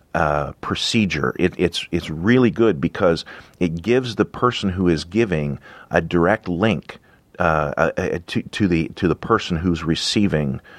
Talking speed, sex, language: 150 wpm, male, English